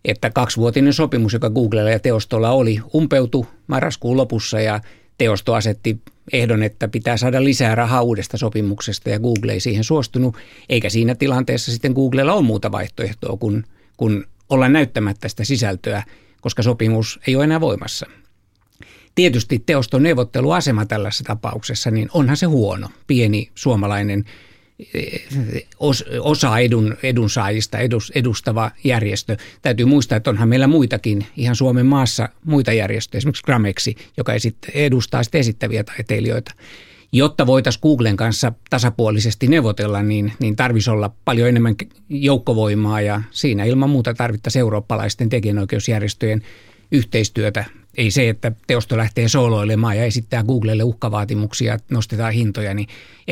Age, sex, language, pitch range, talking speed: 60-79, male, Finnish, 105-130 Hz, 130 wpm